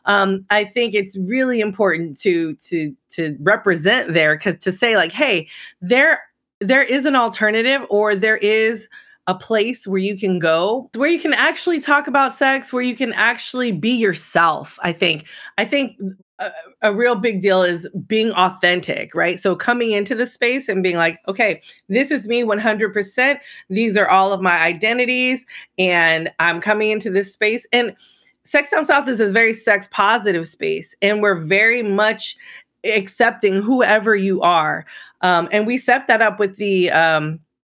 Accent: American